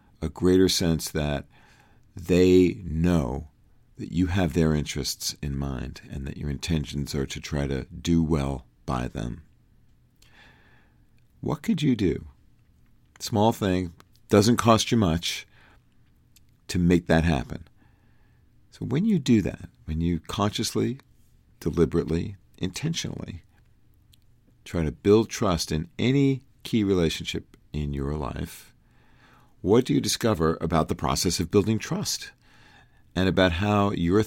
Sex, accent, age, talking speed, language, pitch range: male, American, 50-69, 130 wpm, English, 80-115 Hz